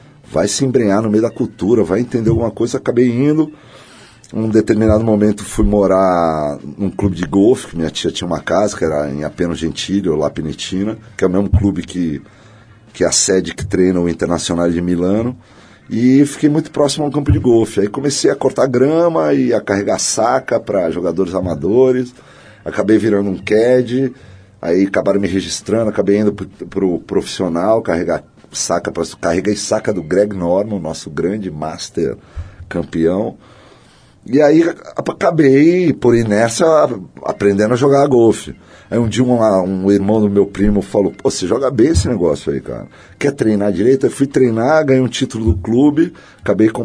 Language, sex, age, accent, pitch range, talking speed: Portuguese, male, 40-59, Brazilian, 95-120 Hz, 175 wpm